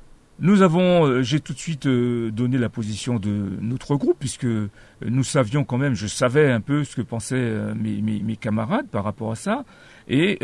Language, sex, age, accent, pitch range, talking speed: French, male, 50-69, French, 110-140 Hz, 190 wpm